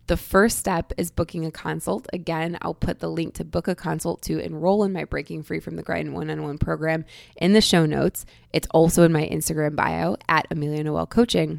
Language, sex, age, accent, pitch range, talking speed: English, female, 20-39, American, 150-175 Hz, 210 wpm